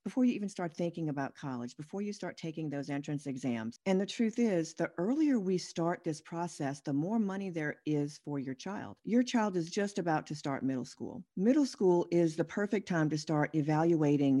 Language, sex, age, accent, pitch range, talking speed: English, female, 50-69, American, 150-205 Hz, 210 wpm